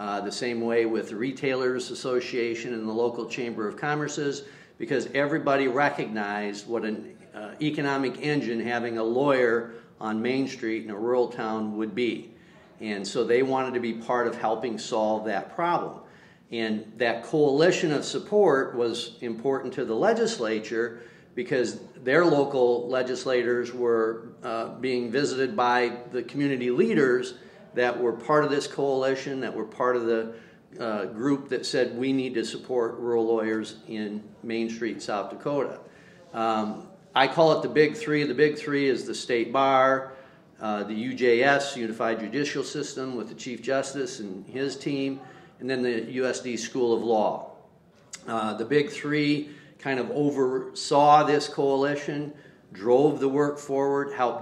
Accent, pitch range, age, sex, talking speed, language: American, 115-140 Hz, 50-69, male, 155 wpm, English